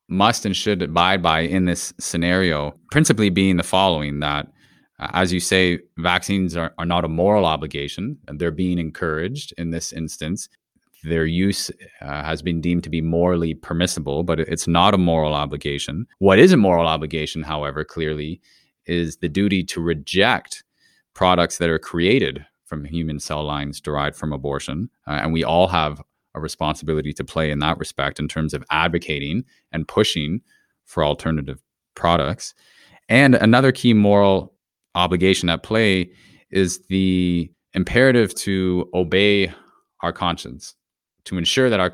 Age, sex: 30-49, male